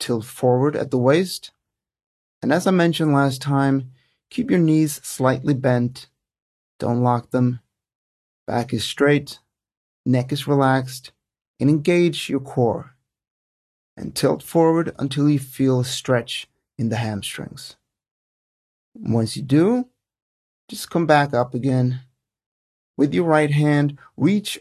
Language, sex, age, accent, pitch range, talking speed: English, male, 30-49, American, 120-145 Hz, 130 wpm